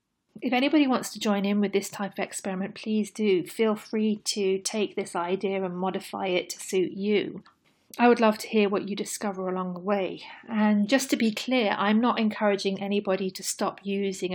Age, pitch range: 40-59, 190-215 Hz